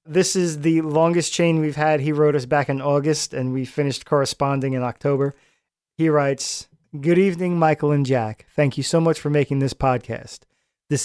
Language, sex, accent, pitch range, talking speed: English, male, American, 130-155 Hz, 190 wpm